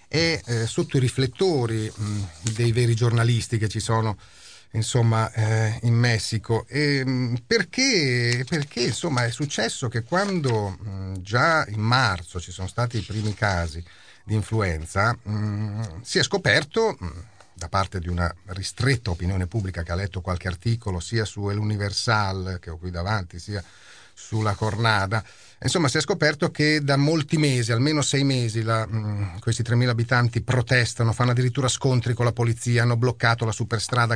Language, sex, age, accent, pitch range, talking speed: Italian, male, 40-59, native, 105-130 Hz, 160 wpm